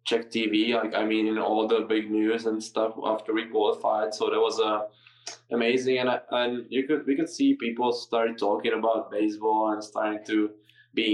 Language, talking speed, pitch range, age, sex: English, 220 wpm, 110-120 Hz, 10-29, male